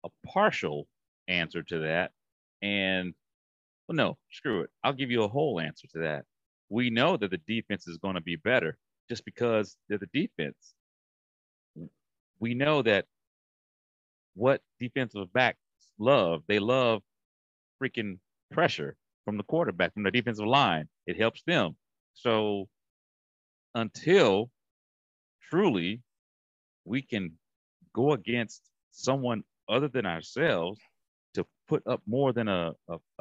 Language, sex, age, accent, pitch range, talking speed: English, male, 40-59, American, 85-120 Hz, 130 wpm